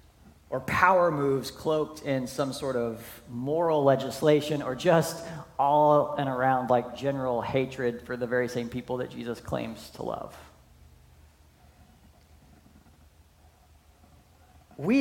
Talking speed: 115 wpm